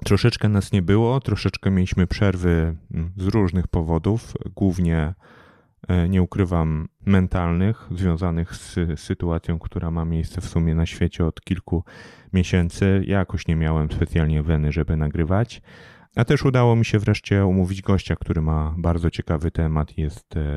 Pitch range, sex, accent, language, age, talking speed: 80-95 Hz, male, native, Polish, 30-49, 145 wpm